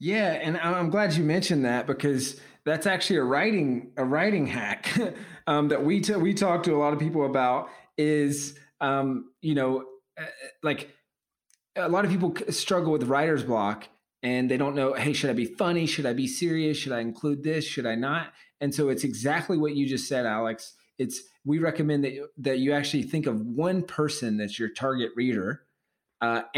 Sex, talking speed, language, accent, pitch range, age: male, 195 wpm, English, American, 125-155 Hz, 30-49